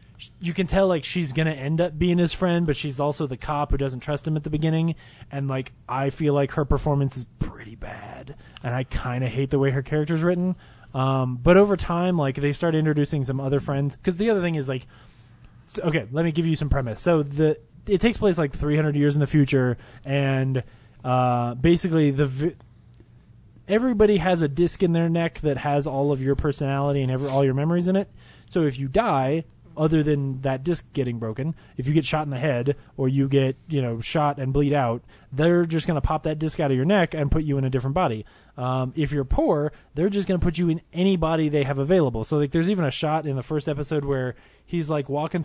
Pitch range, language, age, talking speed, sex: 135-165 Hz, English, 20-39, 235 wpm, male